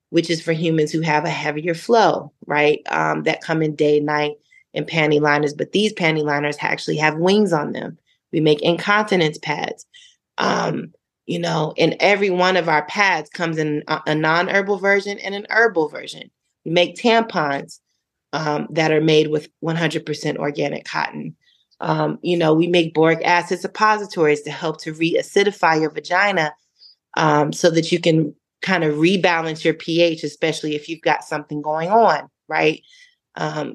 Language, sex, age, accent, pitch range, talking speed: English, female, 30-49, American, 155-185 Hz, 170 wpm